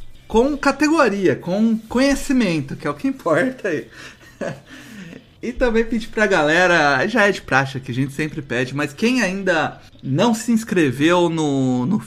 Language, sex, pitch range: Portuguese, male, 135-180 Hz